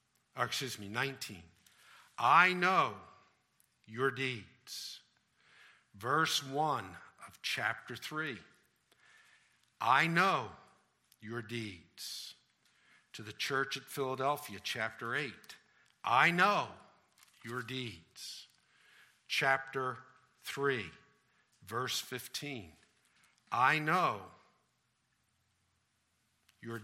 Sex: male